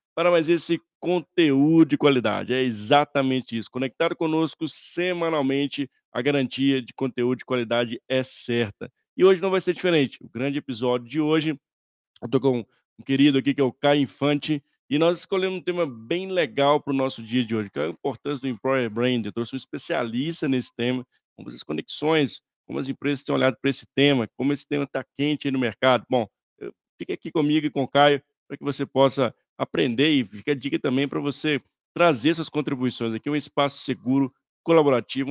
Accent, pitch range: Brazilian, 125-150 Hz